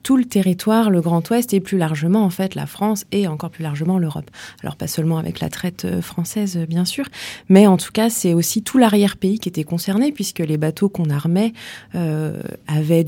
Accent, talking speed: French, 205 wpm